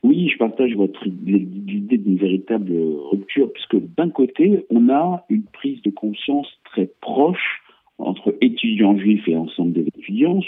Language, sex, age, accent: French, male, 50-69, French